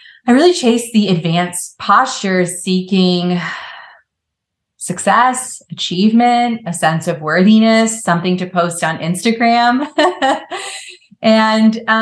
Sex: female